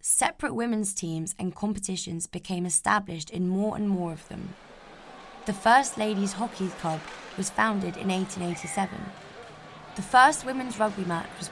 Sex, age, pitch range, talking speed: female, 20-39, 180-220 Hz, 145 wpm